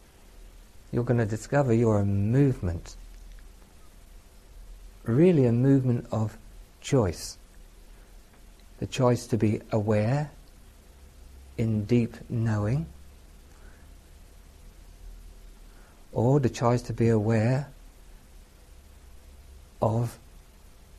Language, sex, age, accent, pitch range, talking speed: English, male, 60-79, British, 75-115 Hz, 75 wpm